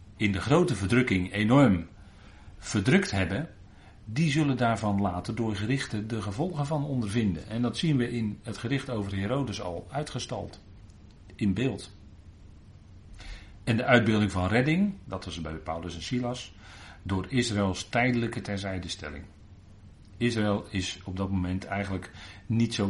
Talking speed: 140 wpm